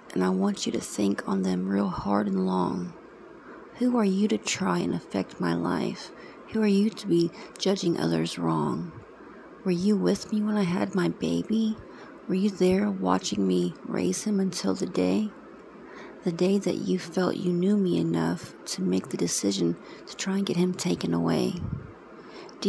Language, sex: English, female